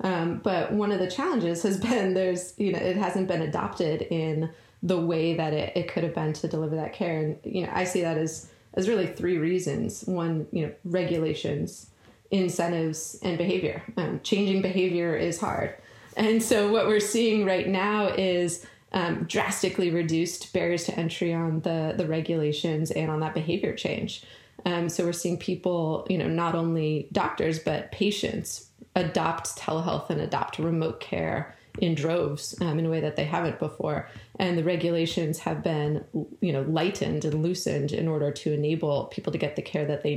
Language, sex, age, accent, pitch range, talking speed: English, female, 20-39, American, 160-190 Hz, 185 wpm